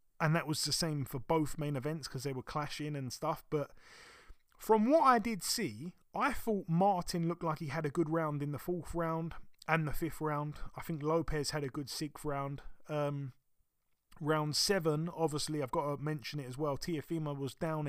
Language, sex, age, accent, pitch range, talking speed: English, male, 20-39, British, 135-165 Hz, 205 wpm